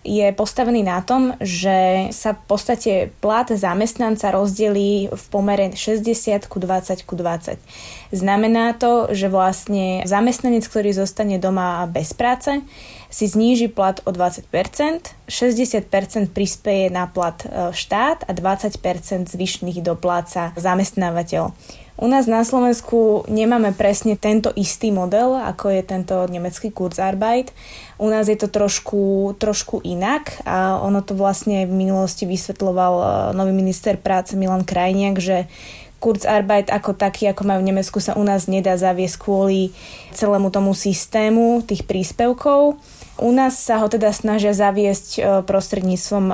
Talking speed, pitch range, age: 135 wpm, 185-215 Hz, 20-39